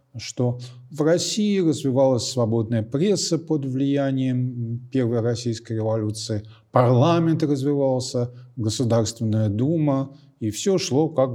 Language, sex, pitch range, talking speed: Russian, male, 115-150 Hz, 100 wpm